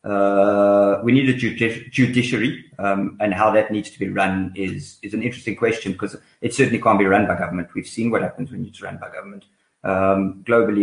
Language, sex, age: English, male, 30-49